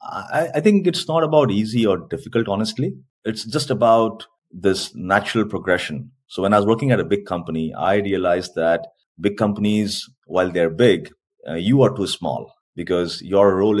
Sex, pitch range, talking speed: male, 85-110 Hz, 180 wpm